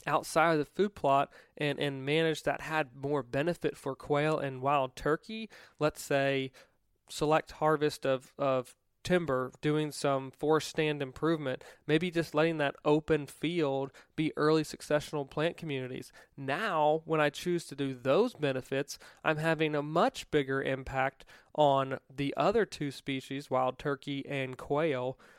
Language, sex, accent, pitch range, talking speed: English, male, American, 135-150 Hz, 150 wpm